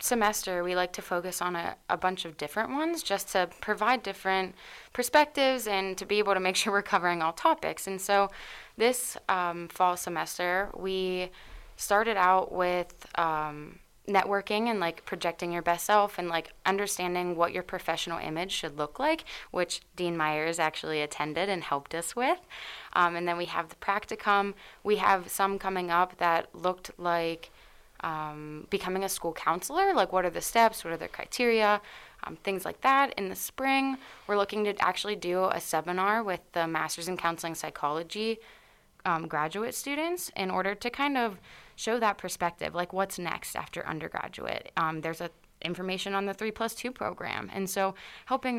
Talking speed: 175 wpm